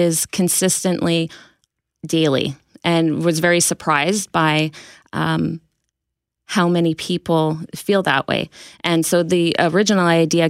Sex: female